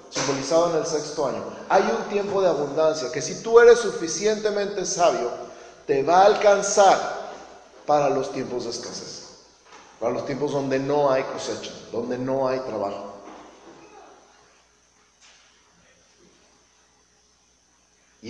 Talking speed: 120 wpm